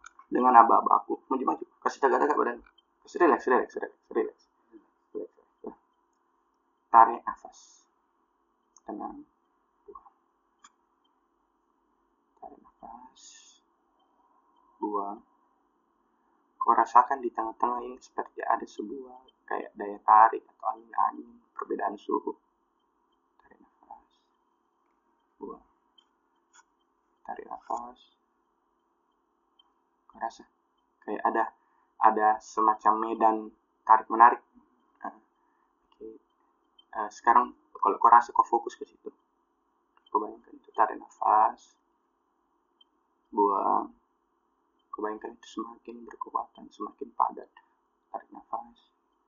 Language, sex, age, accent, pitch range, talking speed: Indonesian, male, 20-39, native, 330-360 Hz, 90 wpm